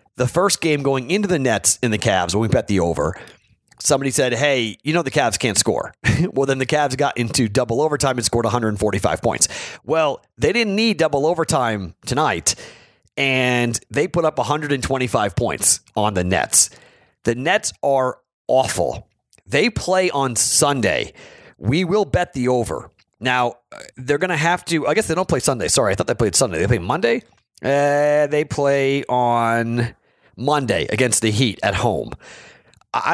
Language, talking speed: English, 175 wpm